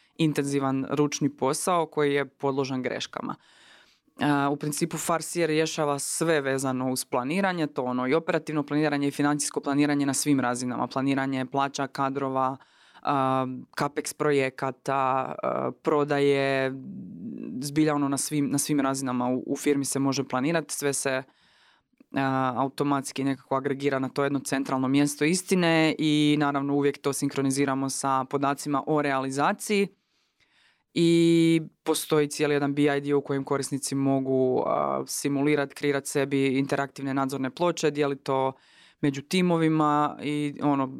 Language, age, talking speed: Croatian, 20-39, 125 wpm